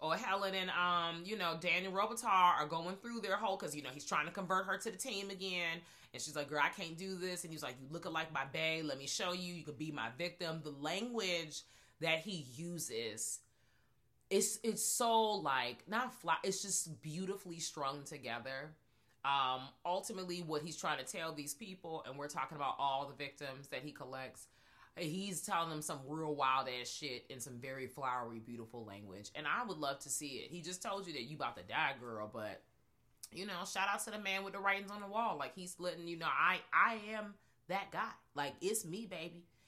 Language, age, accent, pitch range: English, 30-49, American, 140-195 Hz